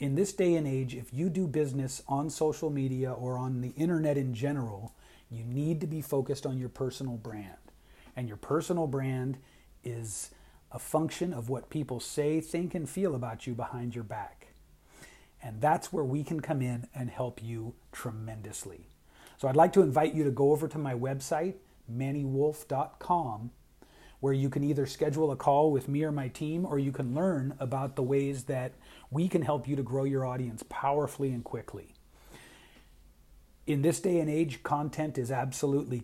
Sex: male